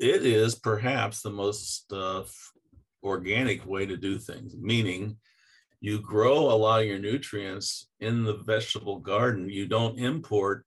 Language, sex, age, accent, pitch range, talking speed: English, male, 50-69, American, 100-130 Hz, 145 wpm